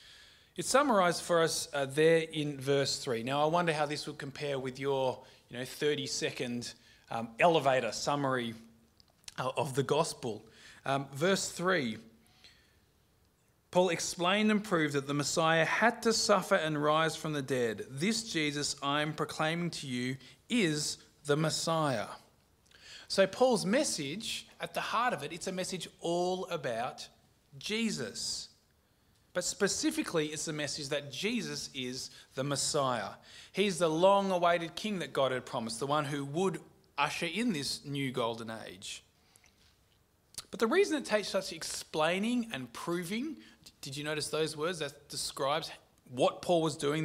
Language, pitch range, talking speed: English, 140-185 Hz, 150 wpm